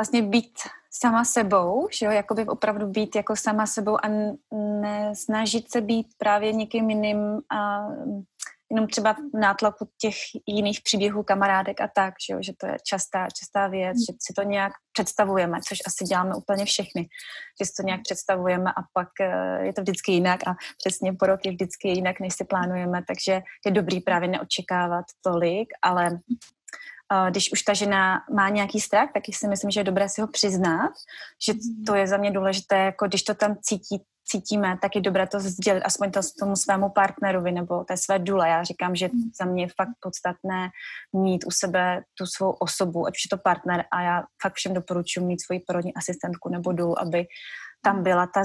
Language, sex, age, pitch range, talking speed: Czech, female, 20-39, 185-210 Hz, 190 wpm